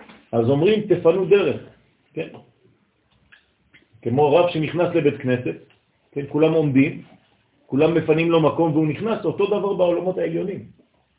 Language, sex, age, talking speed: French, male, 50-69, 115 wpm